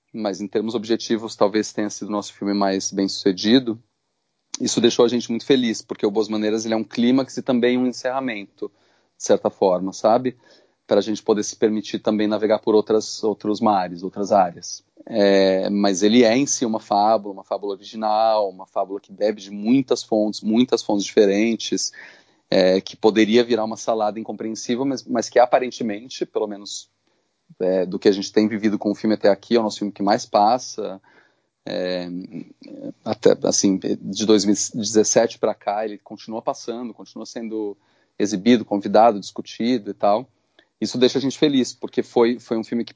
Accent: Brazilian